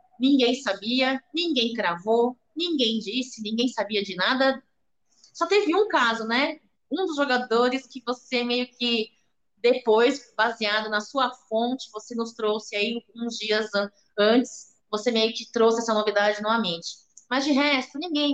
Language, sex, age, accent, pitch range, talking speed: Portuguese, female, 20-39, Brazilian, 215-265 Hz, 145 wpm